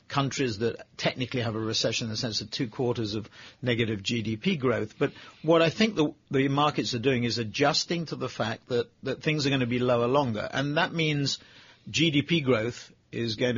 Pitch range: 115-145 Hz